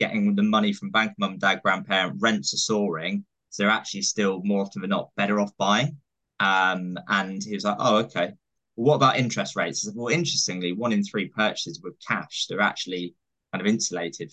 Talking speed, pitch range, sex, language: 200 wpm, 95-140 Hz, male, English